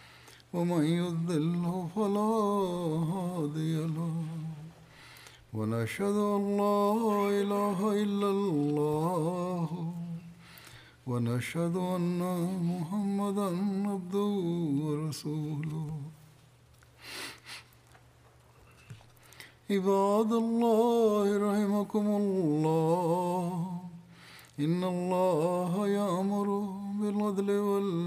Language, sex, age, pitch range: Swahili, male, 60-79, 155-200 Hz